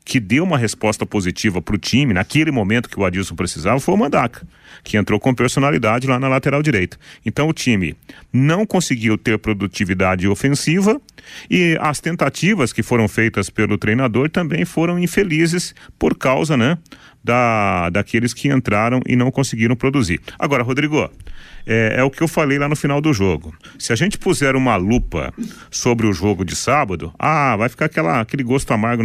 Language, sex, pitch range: Portuguese, male, 110-150 Hz